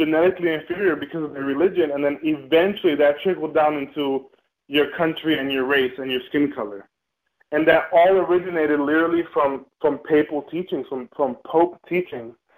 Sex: male